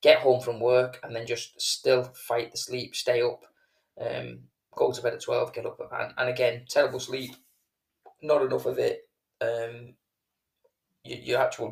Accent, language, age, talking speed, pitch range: British, English, 20-39, 175 wpm, 120-140 Hz